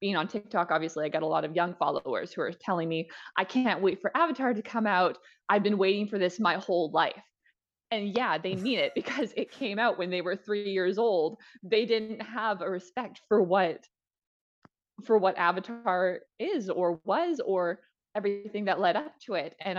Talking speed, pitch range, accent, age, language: 205 wpm, 175-225 Hz, American, 20-39, English